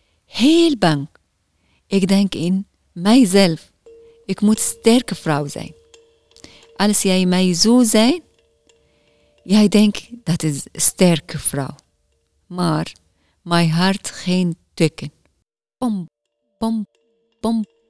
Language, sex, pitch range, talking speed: Dutch, female, 160-225 Hz, 100 wpm